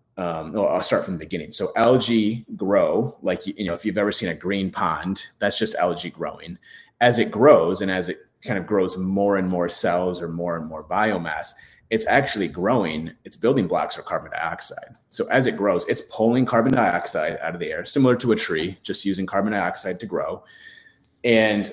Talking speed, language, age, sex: 205 wpm, English, 30-49, male